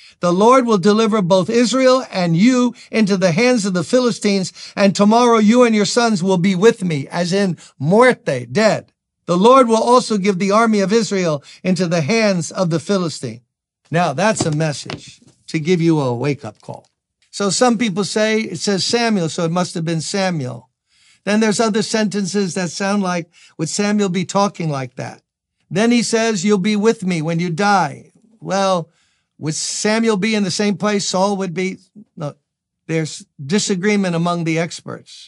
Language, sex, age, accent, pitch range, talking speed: English, male, 60-79, American, 160-215 Hz, 180 wpm